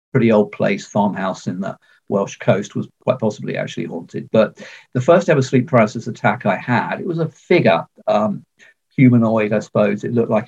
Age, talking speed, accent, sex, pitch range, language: 50-69, 190 wpm, British, male, 115-160 Hz, English